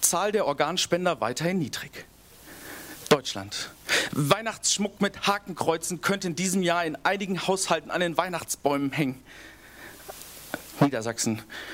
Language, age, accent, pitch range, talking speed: German, 40-59, German, 155-205 Hz, 105 wpm